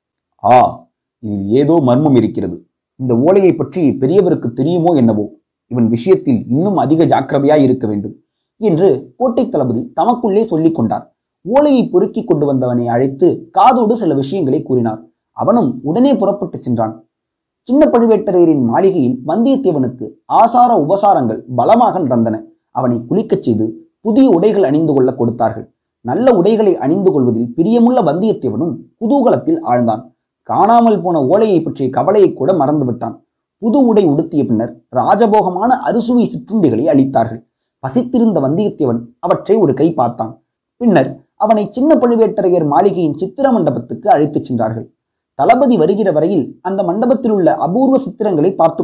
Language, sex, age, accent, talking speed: Tamil, male, 30-49, native, 125 wpm